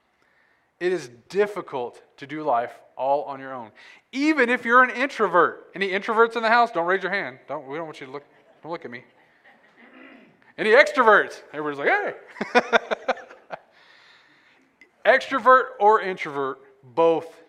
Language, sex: English, male